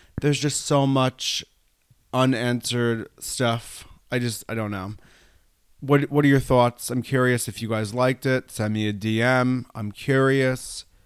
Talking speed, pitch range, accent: 155 wpm, 100-120 Hz, American